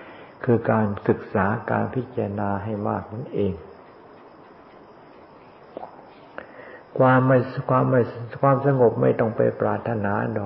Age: 60-79